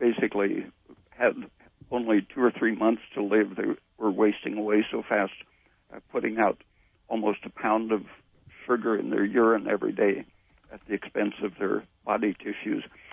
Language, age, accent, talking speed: English, 60-79, American, 160 wpm